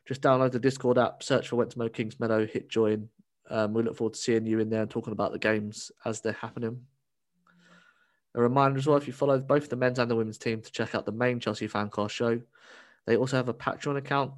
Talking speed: 240 wpm